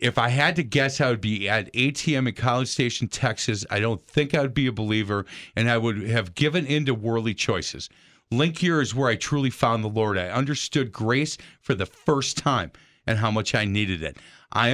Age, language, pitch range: 50-69, English, 110-145 Hz